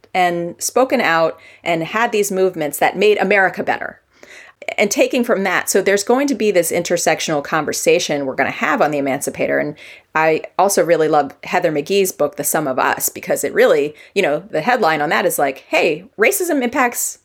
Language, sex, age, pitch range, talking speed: English, female, 30-49, 160-240 Hz, 195 wpm